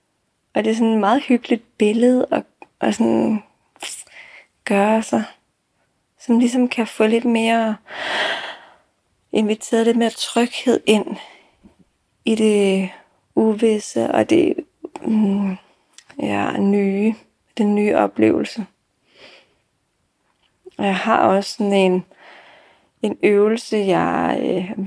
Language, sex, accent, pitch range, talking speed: Danish, female, native, 195-230 Hz, 95 wpm